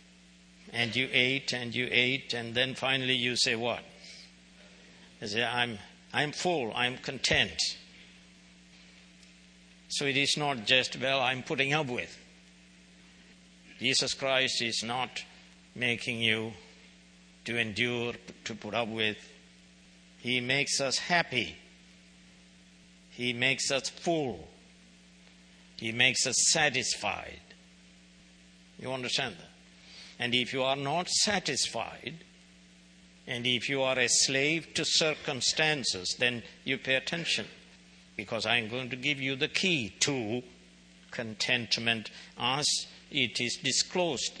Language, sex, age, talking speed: English, male, 60-79, 120 wpm